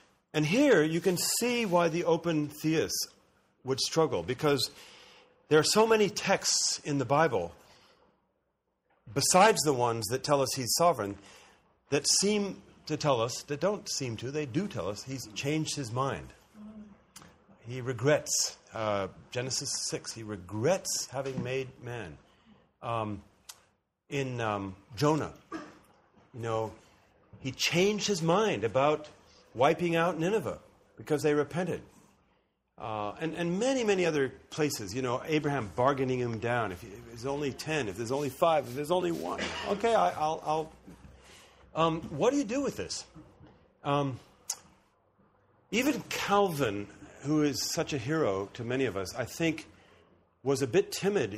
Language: English